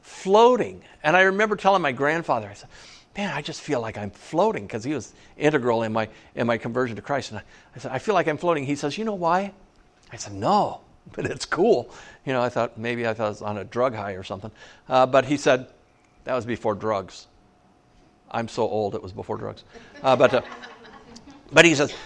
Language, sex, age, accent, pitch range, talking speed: English, male, 60-79, American, 125-175 Hz, 225 wpm